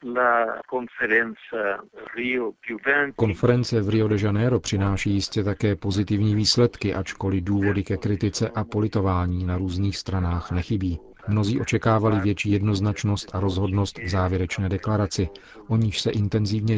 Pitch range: 95-110 Hz